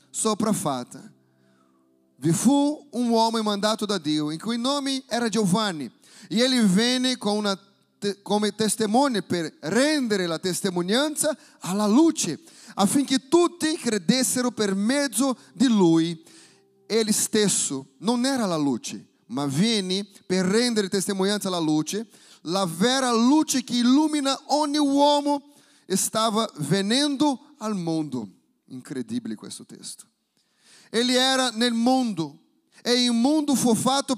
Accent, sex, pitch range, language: Brazilian, male, 195-255 Hz, Italian